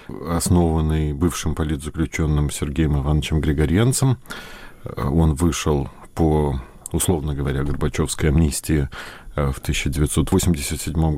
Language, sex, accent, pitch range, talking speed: Russian, male, native, 70-90 Hz, 80 wpm